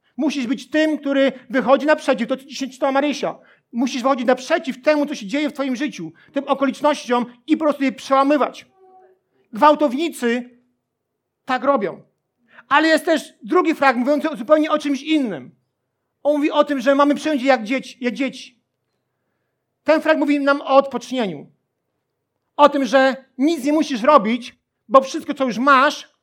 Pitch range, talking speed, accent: 255-300 Hz, 155 wpm, native